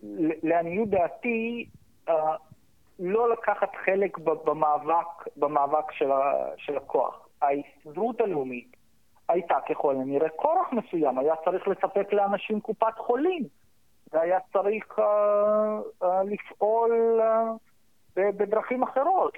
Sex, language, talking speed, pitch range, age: male, Hebrew, 105 wpm, 160-220 Hz, 50-69